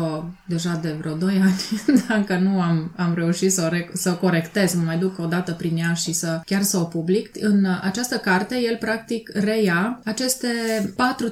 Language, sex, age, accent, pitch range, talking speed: Romanian, female, 20-39, native, 175-225 Hz, 190 wpm